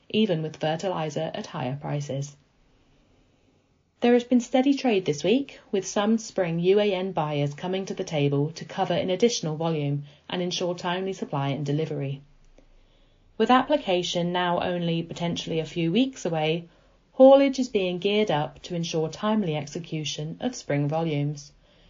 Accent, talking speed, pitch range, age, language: British, 150 wpm, 145-200 Hz, 30-49, English